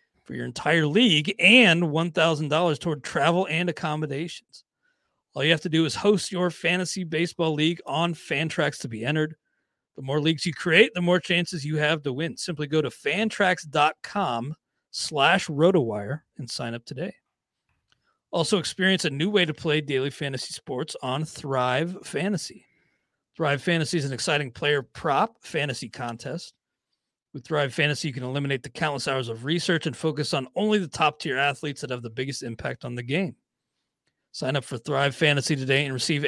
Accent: American